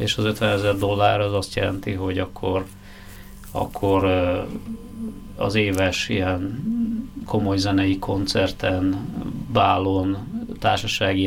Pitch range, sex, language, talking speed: 95-105 Hz, male, Hungarian, 100 wpm